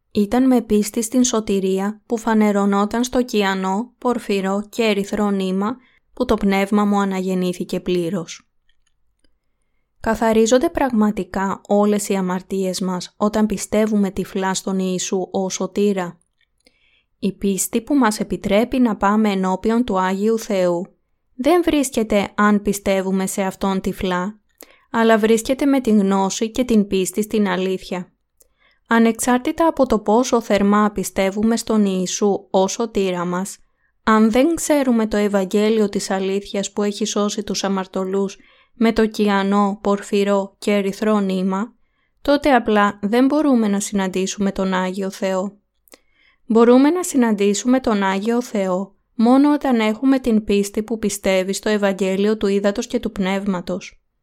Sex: female